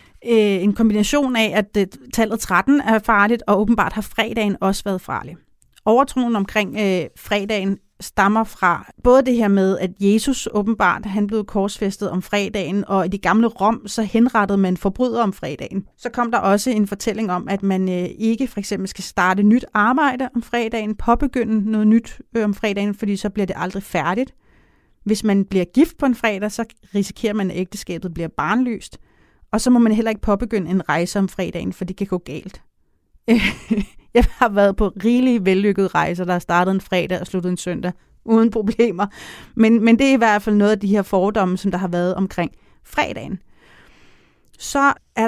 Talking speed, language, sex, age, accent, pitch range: 185 wpm, Danish, female, 30-49, native, 195-230 Hz